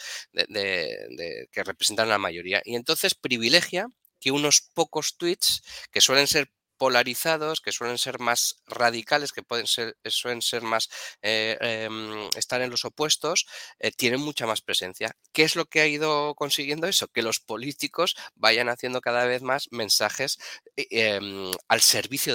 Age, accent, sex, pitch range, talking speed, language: 20-39, Spanish, male, 110-150 Hz, 165 wpm, Spanish